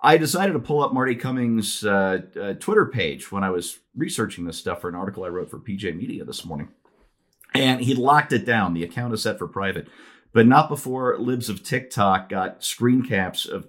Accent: American